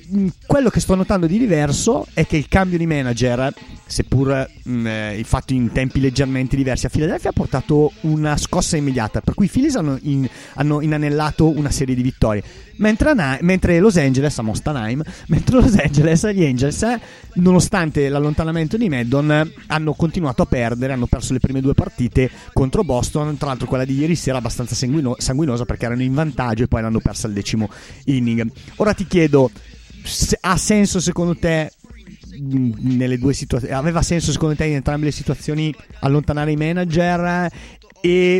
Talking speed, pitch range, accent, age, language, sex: 165 wpm, 130-160 Hz, native, 30-49, Italian, male